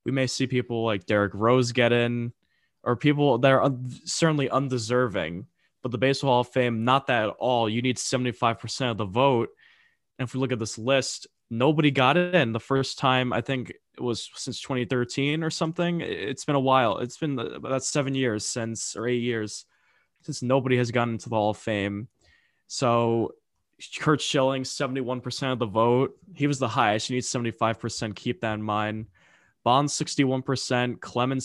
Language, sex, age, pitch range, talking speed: English, male, 20-39, 115-135 Hz, 185 wpm